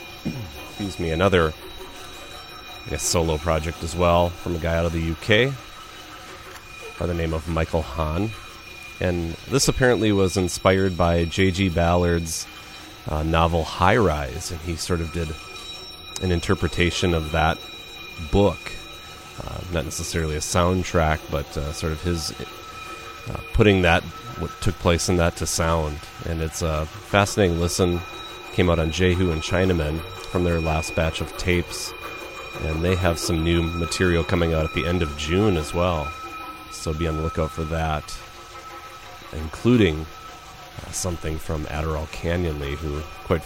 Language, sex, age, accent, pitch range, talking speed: English, male, 30-49, American, 80-90 Hz, 155 wpm